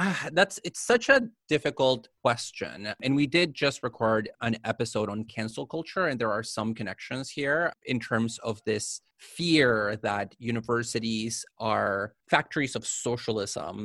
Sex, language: male, English